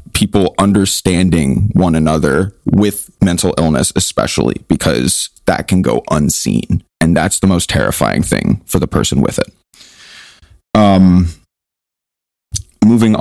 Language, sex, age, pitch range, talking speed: English, male, 30-49, 90-110 Hz, 120 wpm